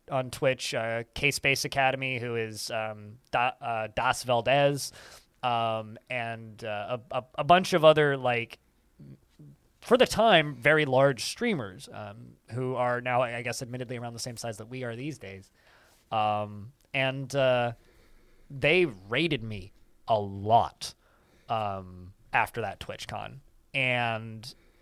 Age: 20-39